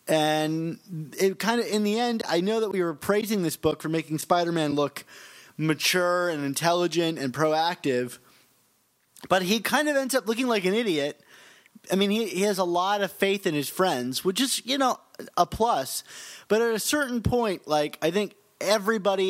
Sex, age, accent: male, 30-49, American